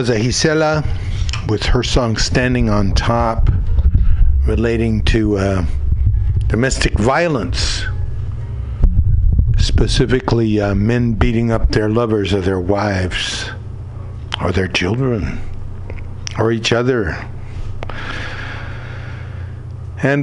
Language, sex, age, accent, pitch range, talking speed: English, male, 60-79, American, 105-125 Hz, 85 wpm